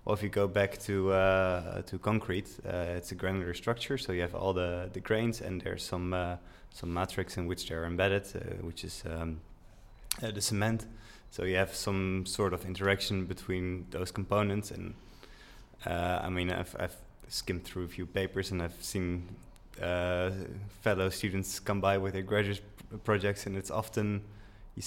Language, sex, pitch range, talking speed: Dutch, male, 90-105 Hz, 185 wpm